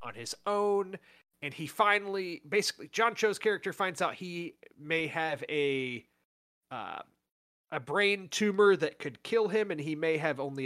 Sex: male